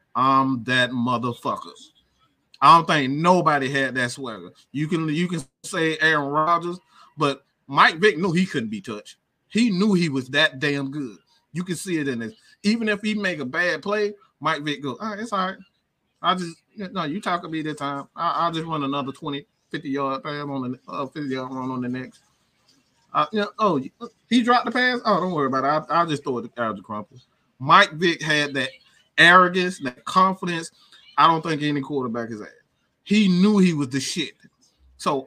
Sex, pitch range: male, 135-180 Hz